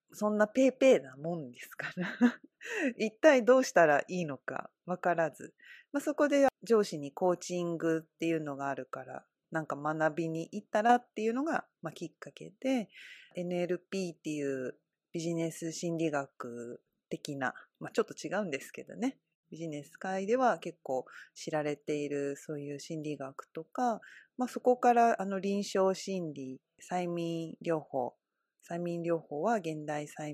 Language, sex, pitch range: Japanese, female, 155-220 Hz